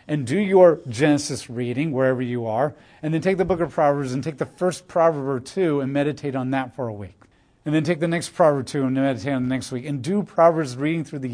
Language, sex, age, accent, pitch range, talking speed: English, male, 40-59, American, 120-155 Hz, 260 wpm